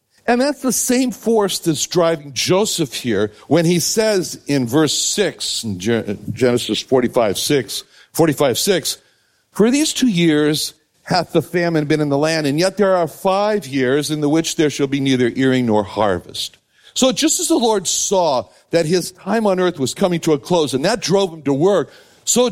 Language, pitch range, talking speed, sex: English, 140-190 Hz, 190 wpm, male